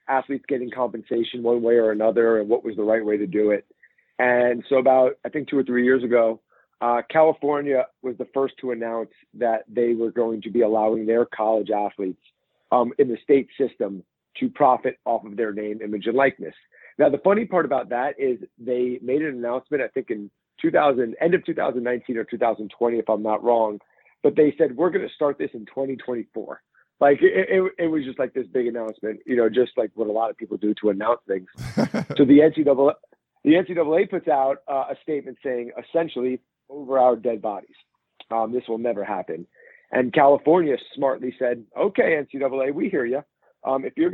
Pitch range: 115-145 Hz